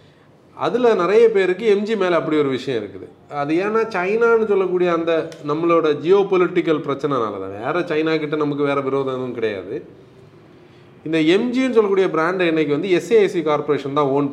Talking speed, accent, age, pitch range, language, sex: 155 wpm, native, 30-49, 135-200 Hz, Tamil, male